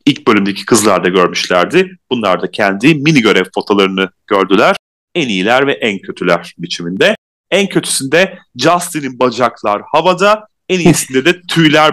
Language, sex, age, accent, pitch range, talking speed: Turkish, male, 30-49, native, 130-180 Hz, 135 wpm